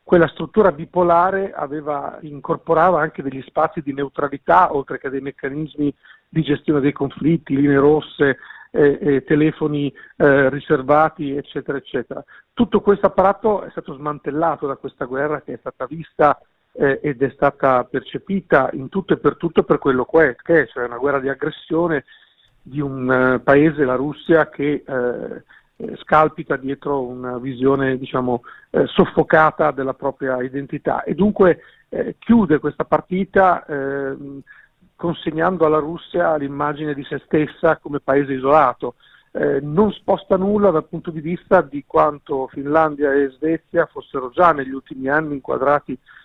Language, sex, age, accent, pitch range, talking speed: Italian, male, 50-69, native, 140-165 Hz, 145 wpm